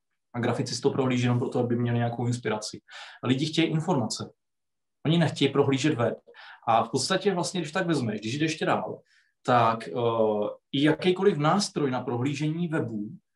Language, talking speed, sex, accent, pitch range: Czech, 160 wpm, male, native, 125-160 Hz